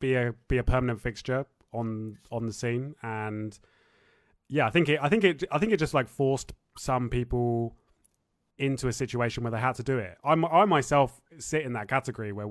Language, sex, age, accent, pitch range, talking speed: English, male, 20-39, British, 115-140 Hz, 205 wpm